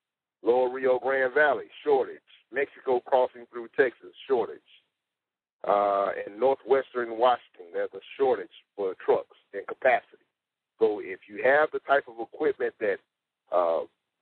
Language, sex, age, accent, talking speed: English, male, 40-59, American, 130 wpm